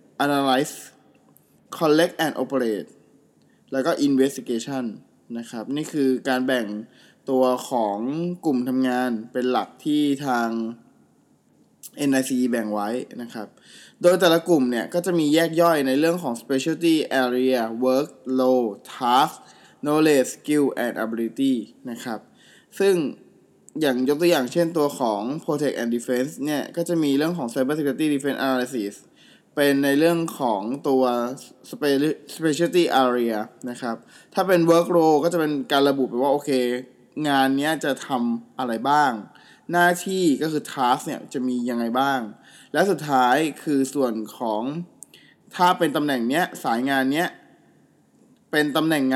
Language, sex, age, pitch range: Thai, male, 20-39, 125-155 Hz